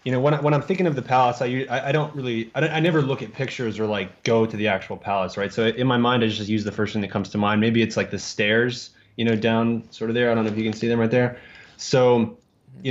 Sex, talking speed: male, 305 wpm